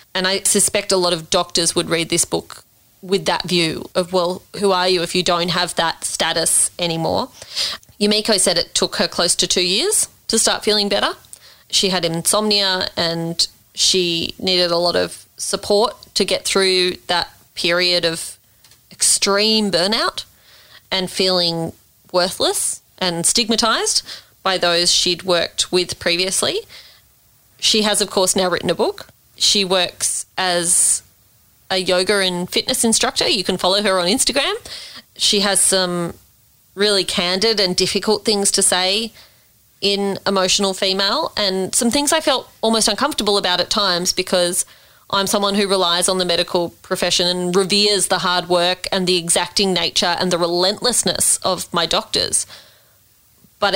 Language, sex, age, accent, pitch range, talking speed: English, female, 30-49, Australian, 175-200 Hz, 155 wpm